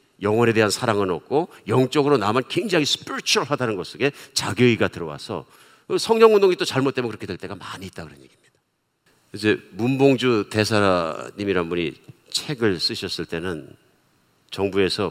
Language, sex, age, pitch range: Korean, male, 50-69, 90-125 Hz